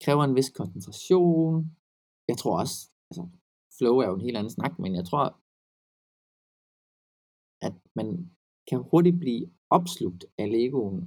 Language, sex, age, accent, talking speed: Danish, male, 20-39, native, 140 wpm